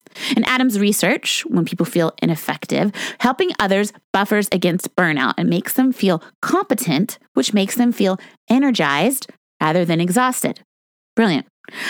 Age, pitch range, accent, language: 30-49, 185-255 Hz, American, English